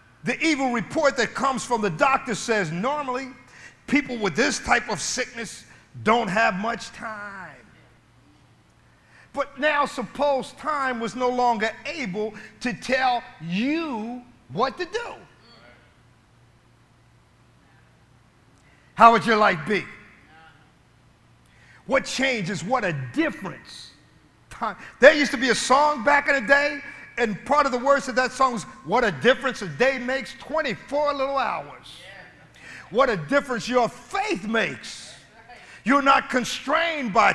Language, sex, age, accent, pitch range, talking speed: English, male, 50-69, American, 205-275 Hz, 130 wpm